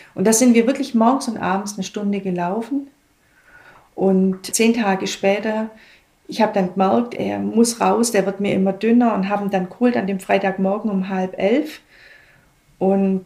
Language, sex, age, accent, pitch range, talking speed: German, female, 40-59, German, 185-215 Hz, 170 wpm